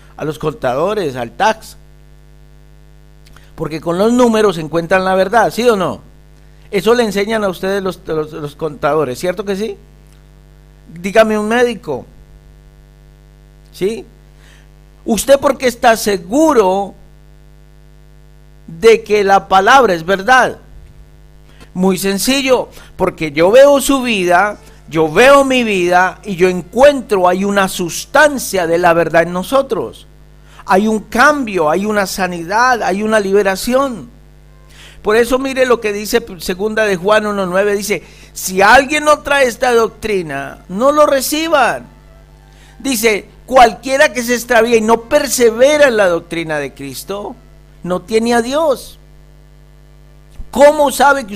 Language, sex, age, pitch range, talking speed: Spanish, male, 50-69, 160-240 Hz, 130 wpm